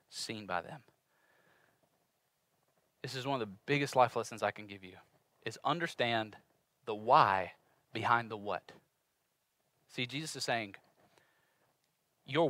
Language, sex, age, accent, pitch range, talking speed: English, male, 30-49, American, 125-175 Hz, 130 wpm